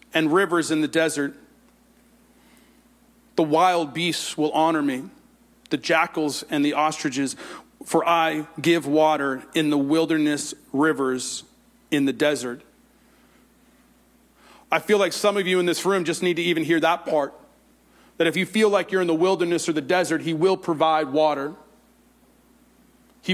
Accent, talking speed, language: American, 155 wpm, English